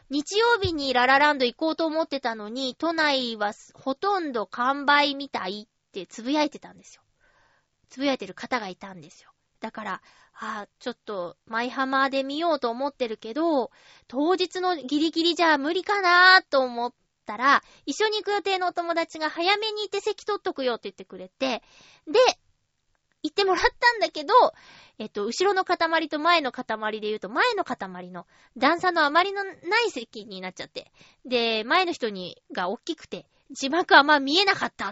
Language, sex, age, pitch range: Japanese, female, 20-39, 230-370 Hz